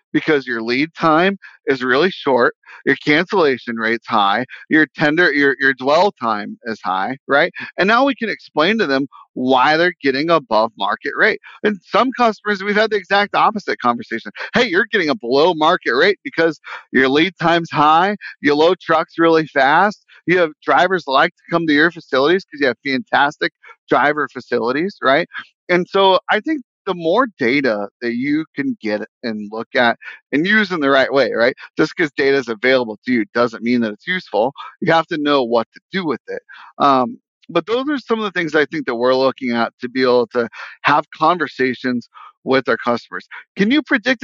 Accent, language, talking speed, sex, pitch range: American, English, 195 wpm, male, 130-195 Hz